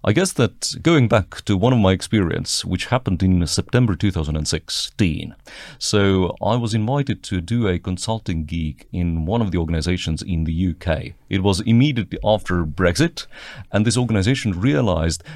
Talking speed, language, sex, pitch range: 160 wpm, English, male, 90-120 Hz